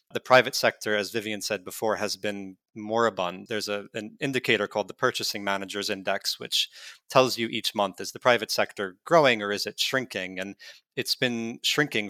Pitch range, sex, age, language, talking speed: 100-125 Hz, male, 30-49, English, 180 wpm